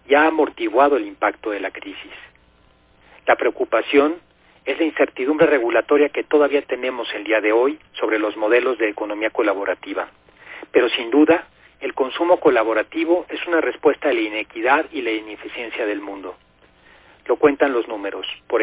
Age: 40-59